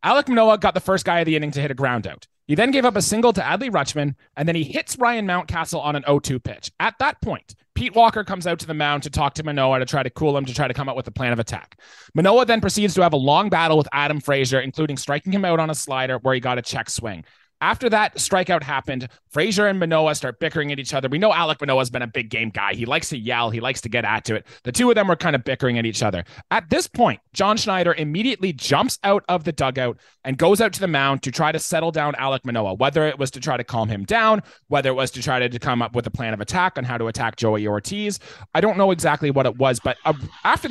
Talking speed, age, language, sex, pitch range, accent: 280 wpm, 20-39, English, male, 130-180 Hz, American